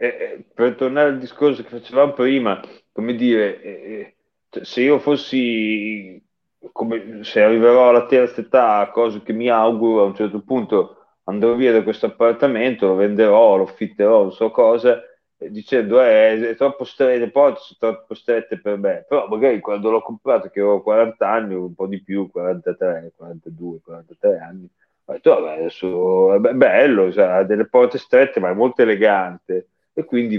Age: 30-49